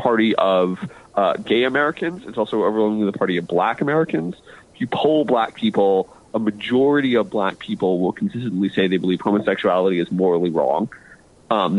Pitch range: 105-145 Hz